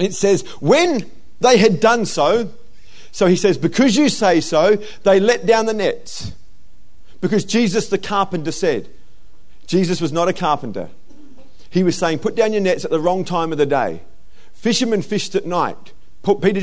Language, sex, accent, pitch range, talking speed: English, male, Australian, 180-245 Hz, 175 wpm